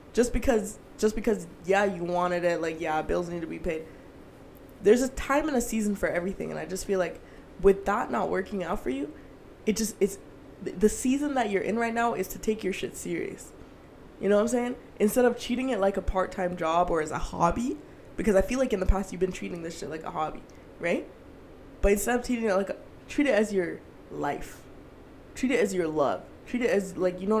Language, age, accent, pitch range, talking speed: English, 20-39, American, 185-230 Hz, 235 wpm